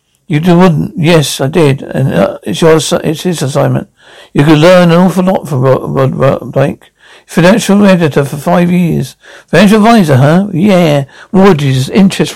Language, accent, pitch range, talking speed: English, British, 150-190 Hz, 160 wpm